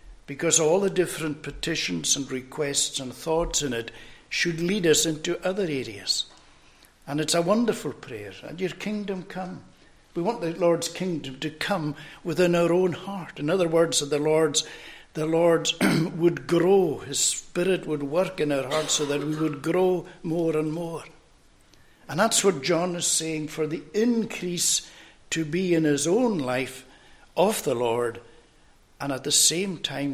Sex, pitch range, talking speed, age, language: male, 140-175 Hz, 170 wpm, 60-79, English